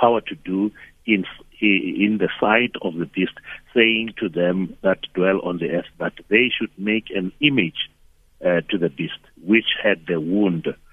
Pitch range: 90-115 Hz